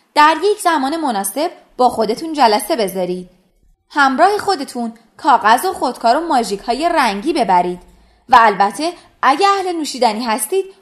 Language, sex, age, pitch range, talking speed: Persian, female, 20-39, 220-355 Hz, 135 wpm